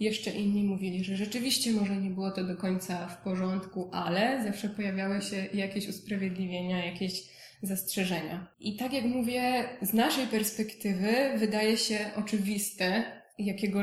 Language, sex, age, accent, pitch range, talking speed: Polish, female, 20-39, native, 190-220 Hz, 140 wpm